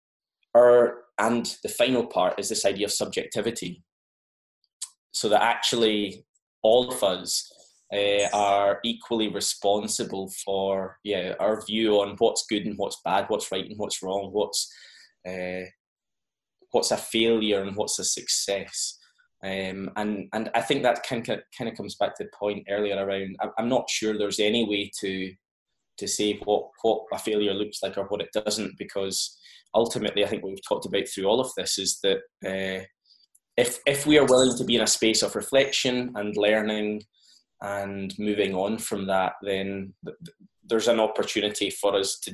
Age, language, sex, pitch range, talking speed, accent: 10-29, English, male, 95-120 Hz, 170 wpm, British